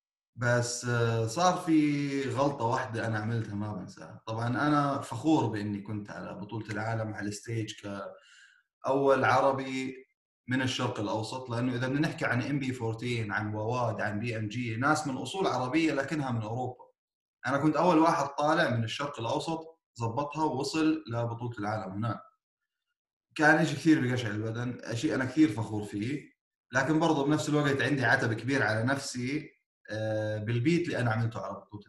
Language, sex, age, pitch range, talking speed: Arabic, male, 30-49, 110-145 Hz, 155 wpm